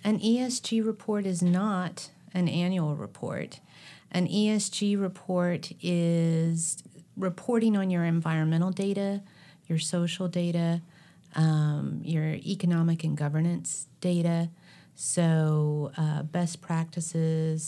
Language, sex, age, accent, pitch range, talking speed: English, female, 40-59, American, 160-180 Hz, 100 wpm